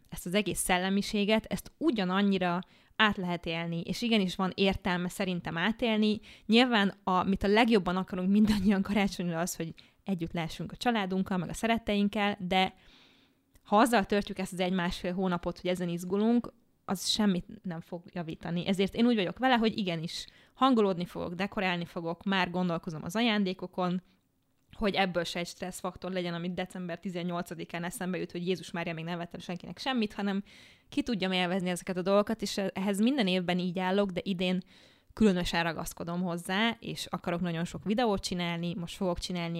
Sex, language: female, Hungarian